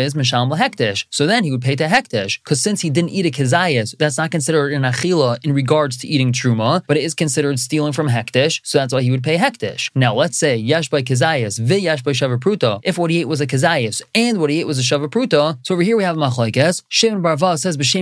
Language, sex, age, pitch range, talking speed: English, male, 20-39, 135-185 Hz, 230 wpm